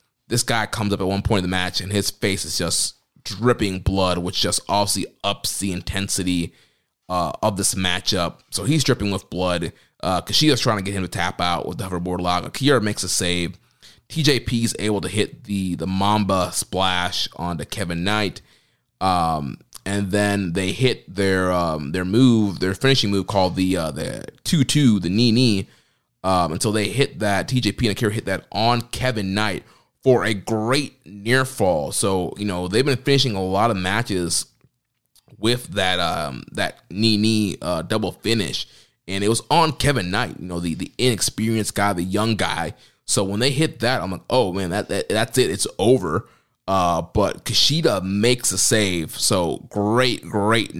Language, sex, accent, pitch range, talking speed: English, male, American, 95-115 Hz, 185 wpm